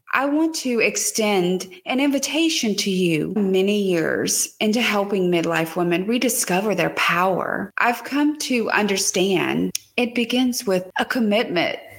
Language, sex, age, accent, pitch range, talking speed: English, female, 30-49, American, 190-245 Hz, 130 wpm